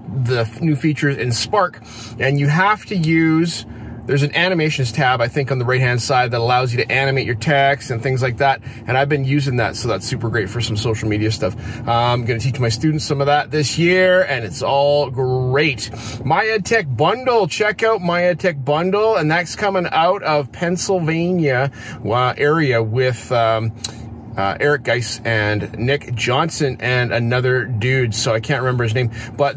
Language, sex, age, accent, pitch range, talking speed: English, male, 30-49, American, 120-155 Hz, 190 wpm